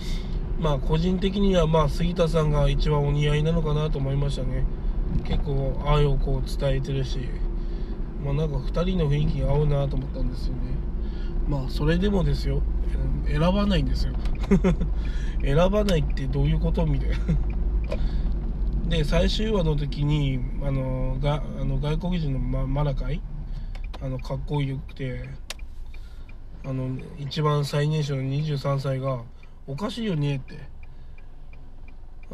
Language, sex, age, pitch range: Japanese, male, 20-39, 135-170 Hz